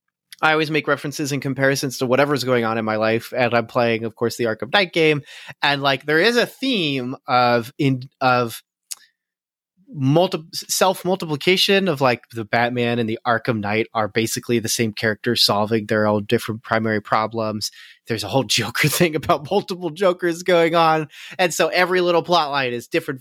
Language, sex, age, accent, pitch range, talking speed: English, male, 30-49, American, 120-170 Hz, 185 wpm